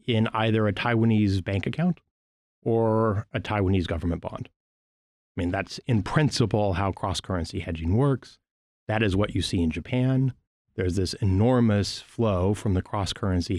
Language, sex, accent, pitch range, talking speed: English, male, American, 90-115 Hz, 150 wpm